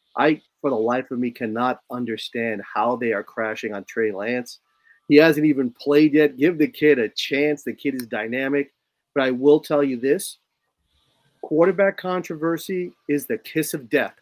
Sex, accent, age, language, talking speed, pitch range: male, American, 30-49, English, 175 wpm, 125-155 Hz